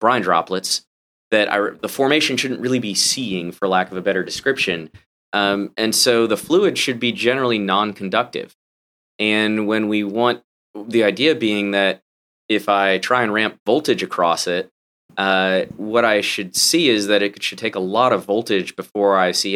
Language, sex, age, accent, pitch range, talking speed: English, male, 30-49, American, 95-110 Hz, 175 wpm